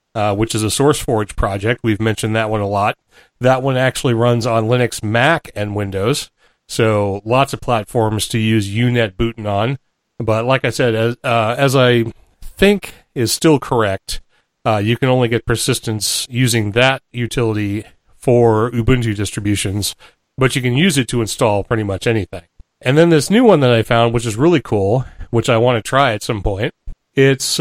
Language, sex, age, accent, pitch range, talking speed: English, male, 40-59, American, 110-135 Hz, 185 wpm